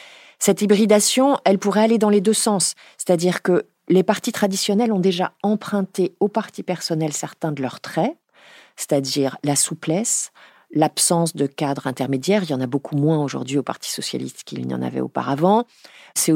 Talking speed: 170 wpm